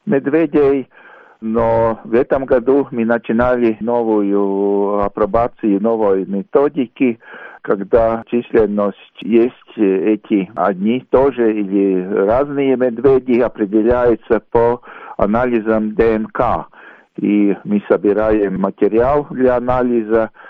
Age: 50-69